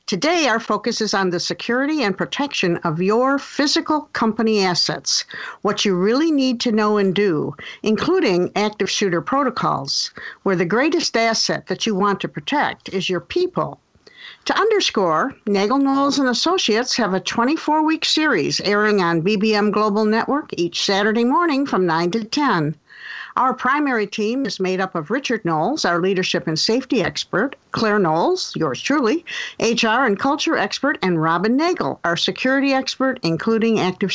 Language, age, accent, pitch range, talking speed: English, 50-69, American, 190-270 Hz, 155 wpm